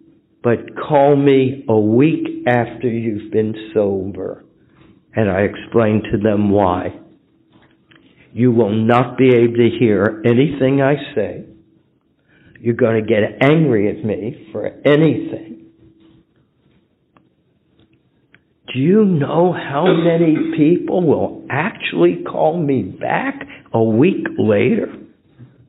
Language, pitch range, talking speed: English, 120-165 Hz, 110 wpm